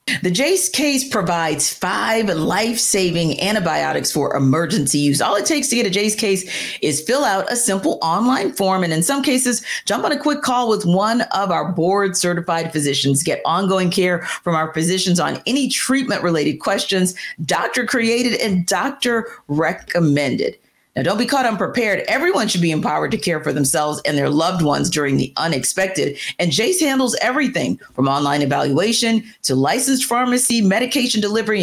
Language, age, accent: English, 40-59, American